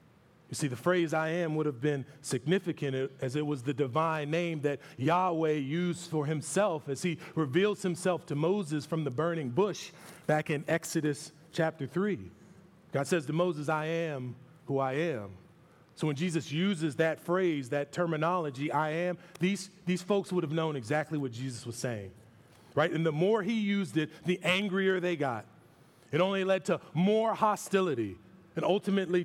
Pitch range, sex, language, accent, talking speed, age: 130-170 Hz, male, English, American, 175 wpm, 30-49